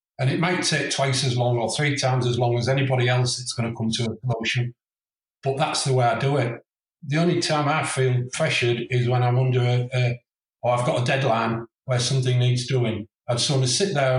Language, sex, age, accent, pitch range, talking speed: English, male, 40-59, British, 120-140 Hz, 240 wpm